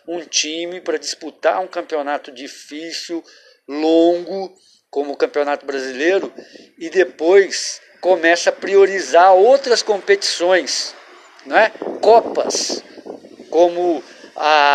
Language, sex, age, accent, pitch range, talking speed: Portuguese, male, 50-69, Brazilian, 170-215 Hz, 100 wpm